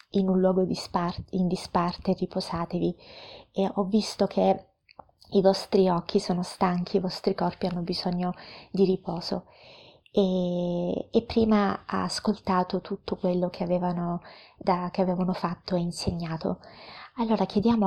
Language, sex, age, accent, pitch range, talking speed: Italian, female, 20-39, native, 180-205 Hz, 135 wpm